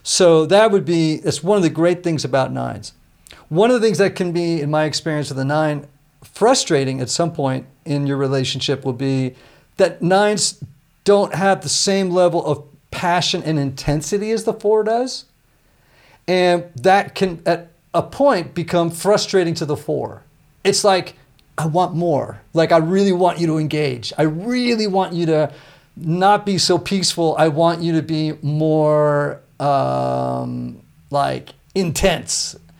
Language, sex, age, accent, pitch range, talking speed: English, male, 40-59, American, 140-180 Hz, 165 wpm